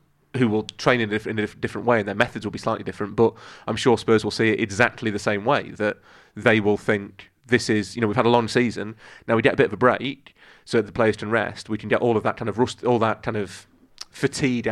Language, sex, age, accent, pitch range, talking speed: English, male, 30-49, British, 110-135 Hz, 265 wpm